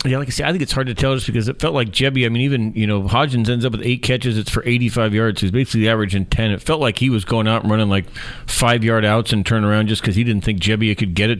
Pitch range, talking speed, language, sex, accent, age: 105-125 Hz, 315 wpm, English, male, American, 40-59